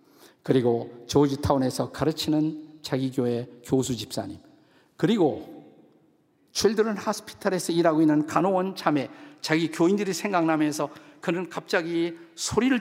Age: 50-69